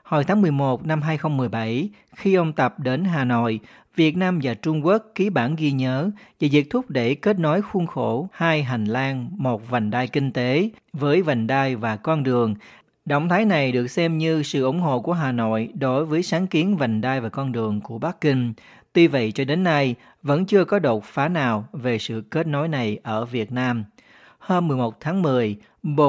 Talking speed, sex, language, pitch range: 205 wpm, male, Vietnamese, 120-165 Hz